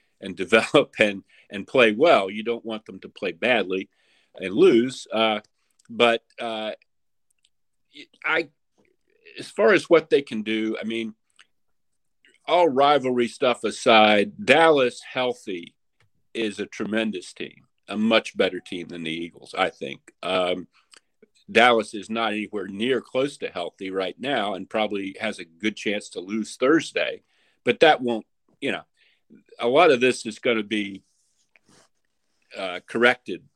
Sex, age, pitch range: male, 50-69, 100-120 Hz